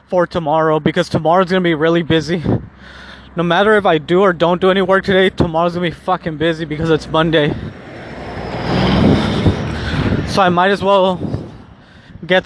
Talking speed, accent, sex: 160 wpm, American, male